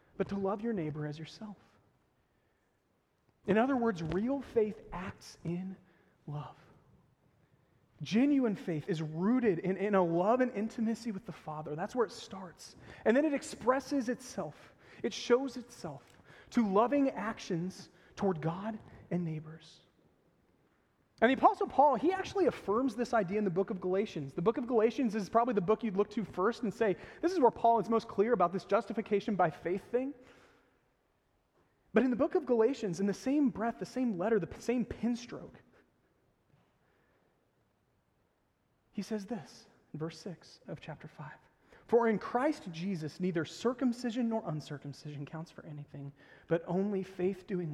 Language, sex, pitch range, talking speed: English, male, 165-230 Hz, 160 wpm